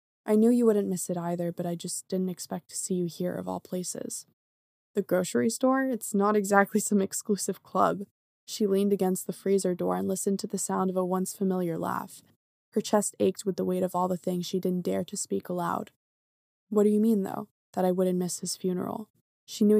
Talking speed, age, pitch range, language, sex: 220 wpm, 20-39, 180-200 Hz, English, female